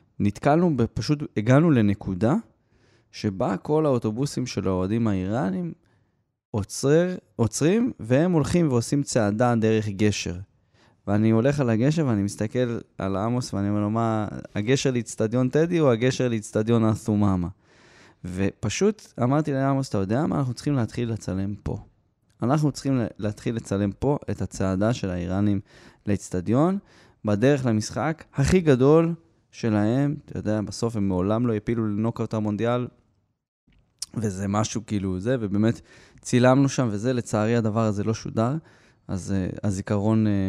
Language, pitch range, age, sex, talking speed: Hebrew, 100-125 Hz, 20-39, male, 125 wpm